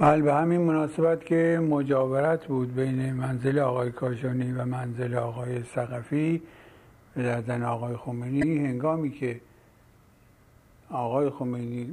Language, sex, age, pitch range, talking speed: Persian, male, 60-79, 120-140 Hz, 110 wpm